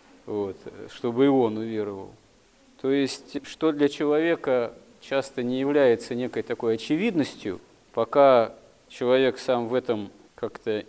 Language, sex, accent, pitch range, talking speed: Russian, male, native, 120-145 Hz, 115 wpm